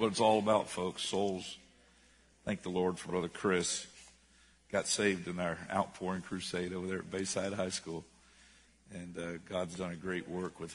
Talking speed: 180 wpm